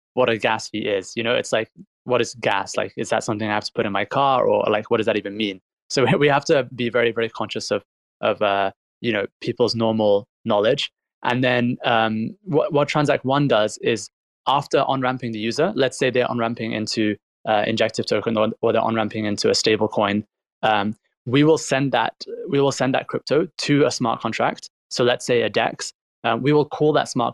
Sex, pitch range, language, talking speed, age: male, 110-130 Hz, English, 225 wpm, 20-39